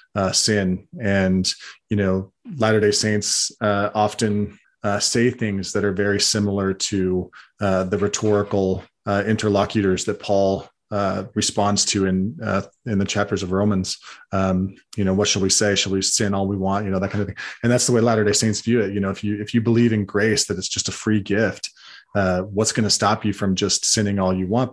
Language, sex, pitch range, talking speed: English, male, 95-105 Hz, 215 wpm